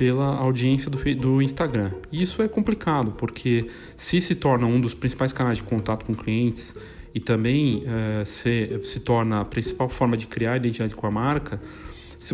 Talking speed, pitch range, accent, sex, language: 180 wpm, 115-145 Hz, Brazilian, male, Portuguese